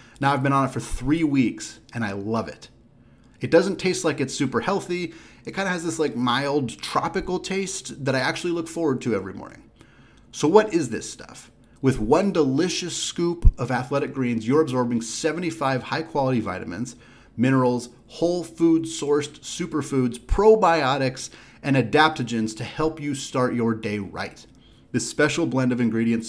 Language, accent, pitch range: English, American, 120-160 Hz